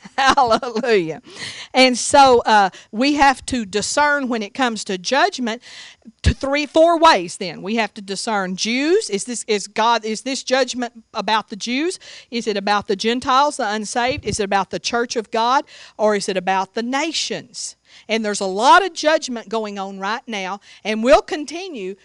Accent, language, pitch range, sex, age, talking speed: American, English, 205-255 Hz, female, 50-69, 180 wpm